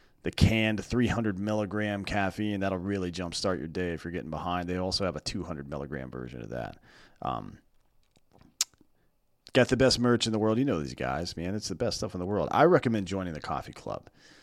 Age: 30-49